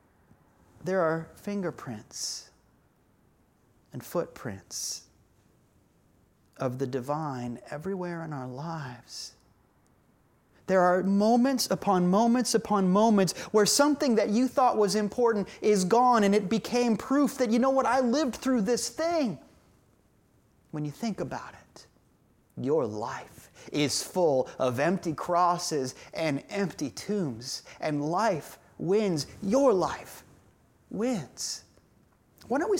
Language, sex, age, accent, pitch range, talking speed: English, male, 30-49, American, 135-205 Hz, 120 wpm